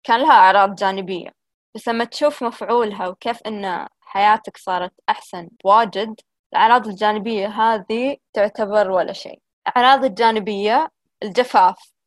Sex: female